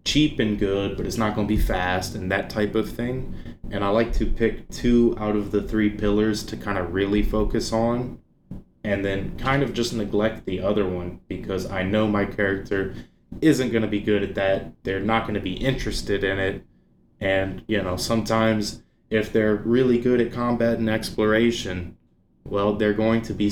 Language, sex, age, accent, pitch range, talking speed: English, male, 20-39, American, 95-110 Hz, 200 wpm